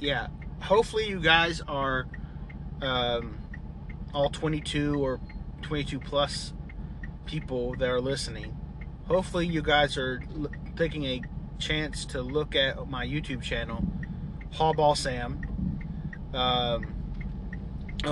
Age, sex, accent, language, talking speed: 30-49, male, American, English, 110 wpm